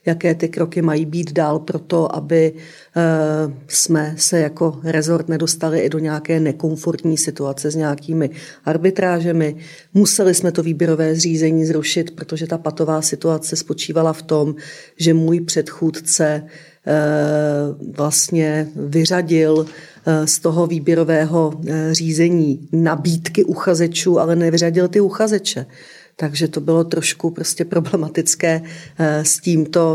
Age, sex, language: 40-59, female, Czech